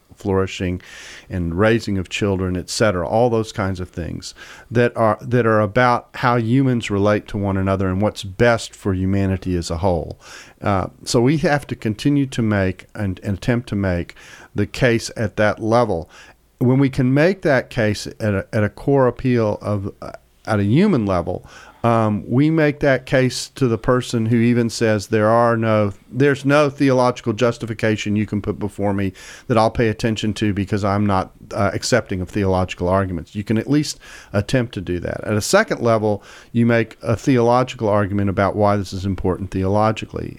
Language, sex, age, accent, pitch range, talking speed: English, male, 40-59, American, 100-125 Hz, 185 wpm